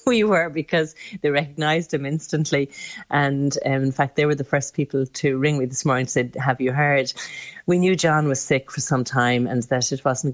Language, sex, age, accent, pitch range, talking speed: English, female, 40-59, Irish, 130-145 Hz, 220 wpm